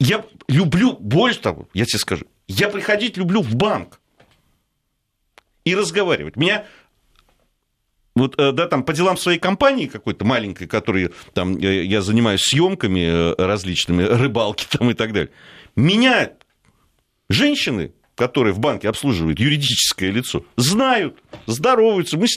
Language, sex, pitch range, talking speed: Russian, male, 115-190 Hz, 125 wpm